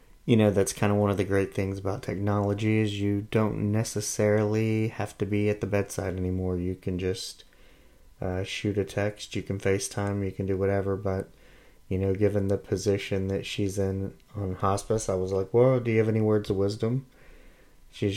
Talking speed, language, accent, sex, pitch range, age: 200 wpm, English, American, male, 95-110 Hz, 30-49